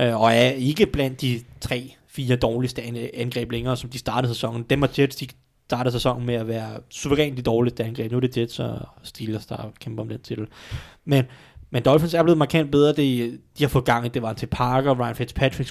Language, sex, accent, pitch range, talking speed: Danish, male, native, 125-155 Hz, 215 wpm